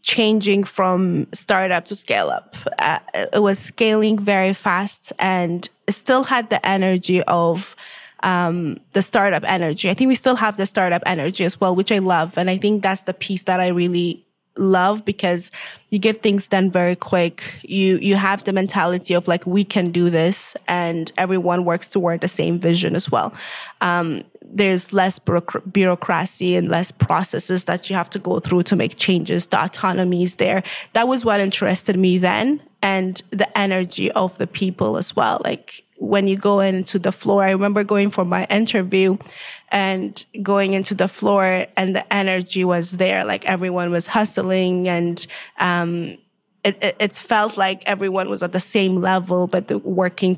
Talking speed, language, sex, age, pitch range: 175 wpm, English, female, 20-39, 180-200 Hz